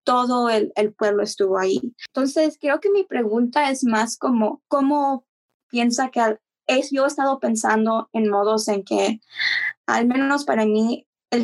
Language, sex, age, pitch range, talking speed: English, female, 20-39, 220-265 Hz, 170 wpm